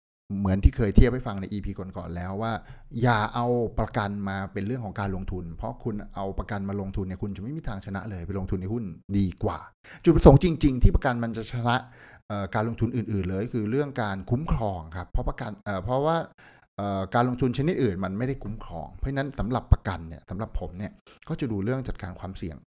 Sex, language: male, Thai